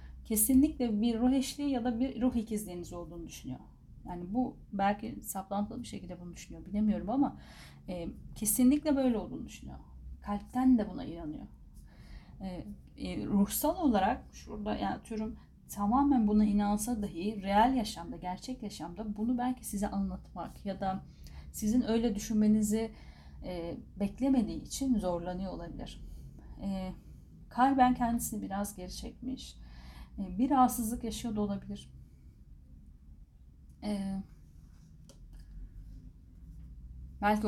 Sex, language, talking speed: female, Turkish, 115 wpm